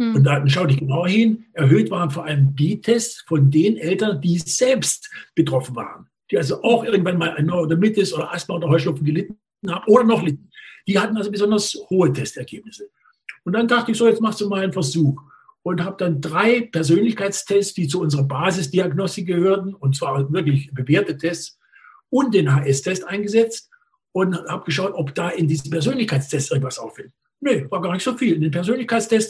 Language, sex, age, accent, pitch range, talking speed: German, male, 60-79, German, 155-210 Hz, 185 wpm